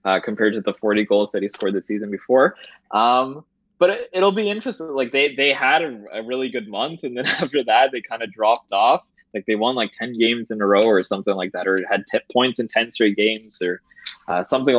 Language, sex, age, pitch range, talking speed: English, male, 20-39, 105-130 Hz, 245 wpm